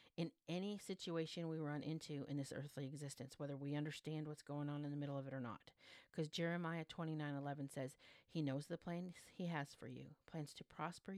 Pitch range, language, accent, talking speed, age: 140-175 Hz, English, American, 215 wpm, 50-69